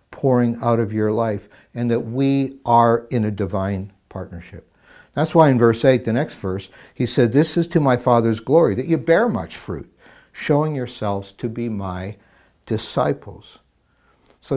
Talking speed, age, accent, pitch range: 170 wpm, 60-79, American, 105-130 Hz